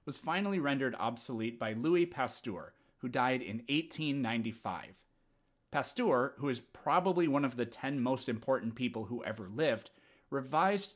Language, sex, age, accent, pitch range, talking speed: English, male, 30-49, American, 120-160 Hz, 140 wpm